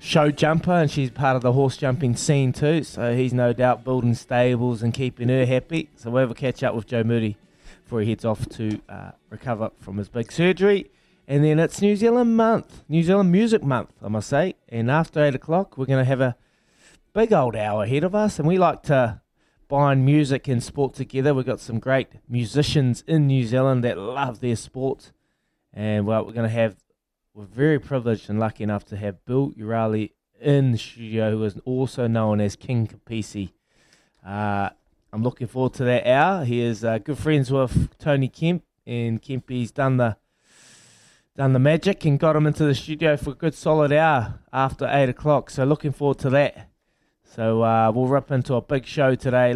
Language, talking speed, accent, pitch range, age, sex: English, 200 wpm, Australian, 115-145 Hz, 20-39, male